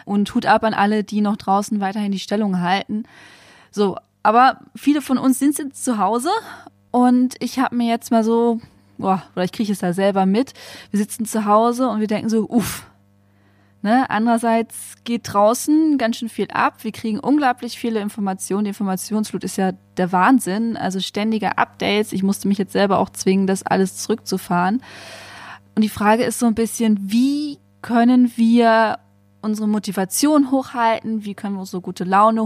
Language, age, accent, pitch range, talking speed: German, 20-39, German, 195-235 Hz, 175 wpm